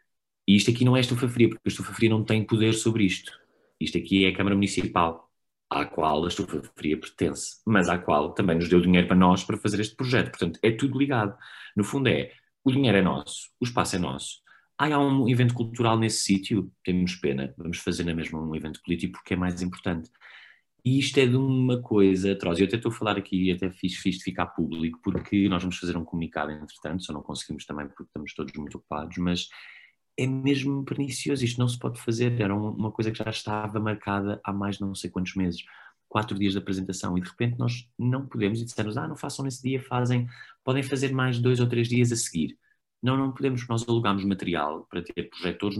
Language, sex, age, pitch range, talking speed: Portuguese, male, 30-49, 90-120 Hz, 225 wpm